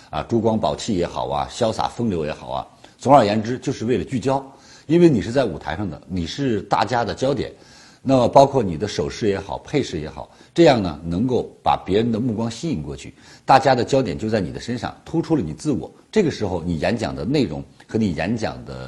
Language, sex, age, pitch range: Chinese, male, 50-69, 80-125 Hz